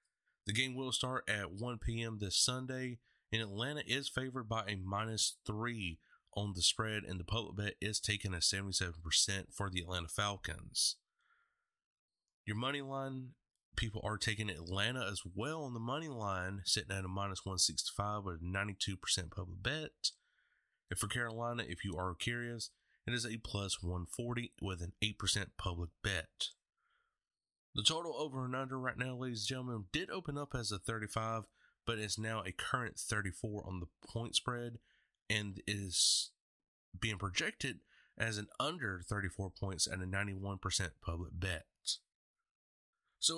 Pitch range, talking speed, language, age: 95-120 Hz, 155 wpm, English, 30-49